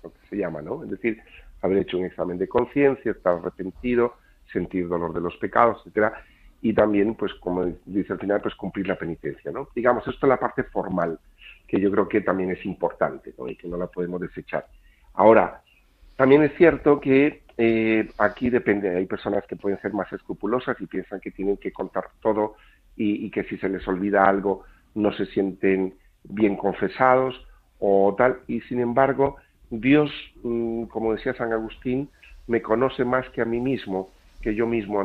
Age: 50-69